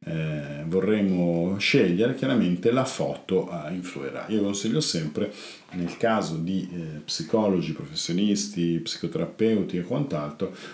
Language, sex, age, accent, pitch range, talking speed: Italian, male, 50-69, native, 80-105 Hz, 110 wpm